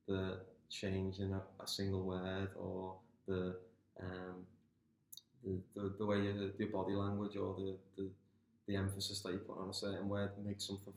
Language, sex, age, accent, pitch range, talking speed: English, male, 20-39, British, 95-105 Hz, 175 wpm